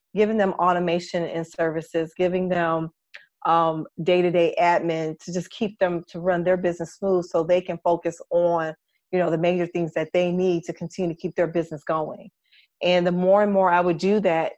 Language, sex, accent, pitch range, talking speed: English, female, American, 165-190 Hz, 200 wpm